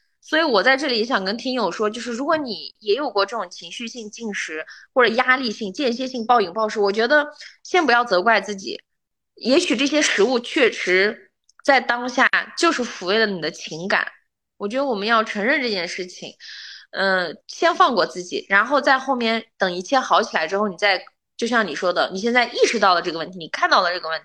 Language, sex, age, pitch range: Chinese, female, 20-39, 210-280 Hz